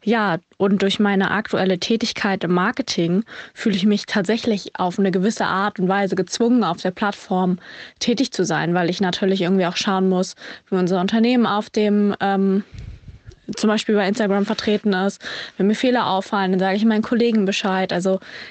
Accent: German